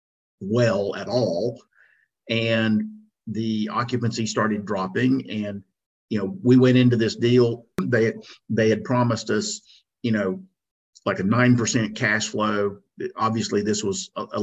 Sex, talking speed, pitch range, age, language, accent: male, 135 wpm, 105-130 Hz, 50-69, English, American